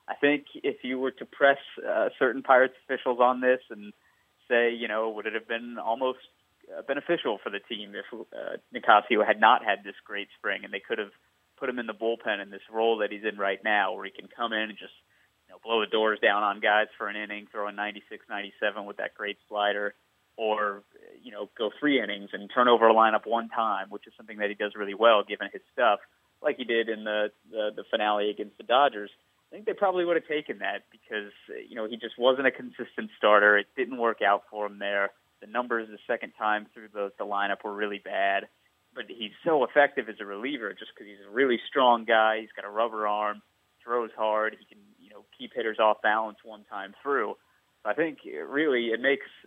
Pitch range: 105-120 Hz